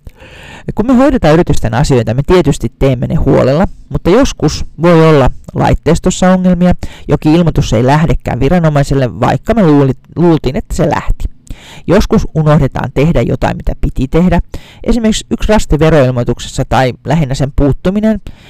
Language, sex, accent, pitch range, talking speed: Finnish, male, native, 130-165 Hz, 135 wpm